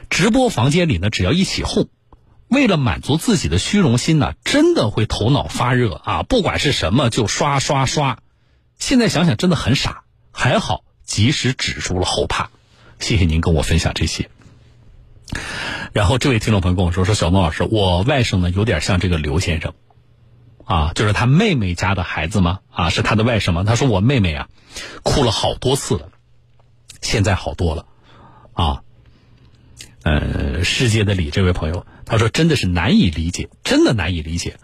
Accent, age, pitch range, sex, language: native, 50-69, 95-150 Hz, male, Chinese